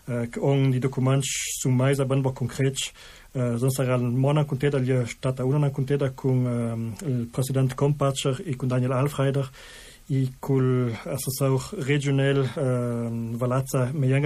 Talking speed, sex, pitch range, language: 105 wpm, male, 130-140 Hz, Italian